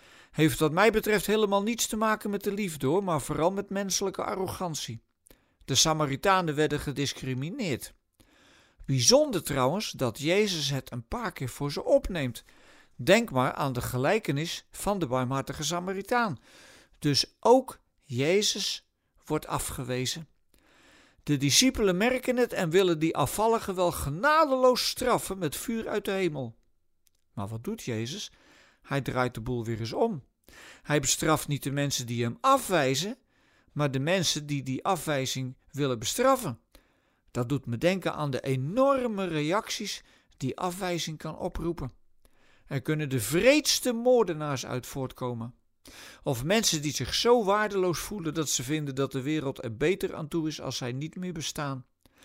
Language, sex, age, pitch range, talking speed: Dutch, male, 50-69, 135-195 Hz, 150 wpm